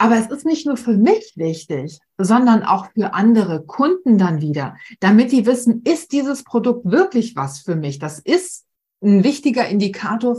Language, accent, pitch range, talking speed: German, German, 180-235 Hz, 175 wpm